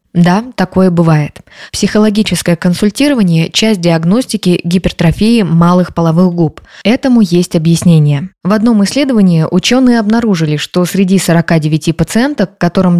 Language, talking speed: Russian, 110 wpm